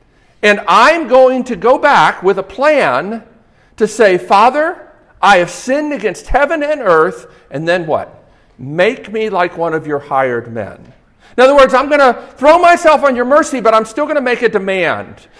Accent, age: American, 50-69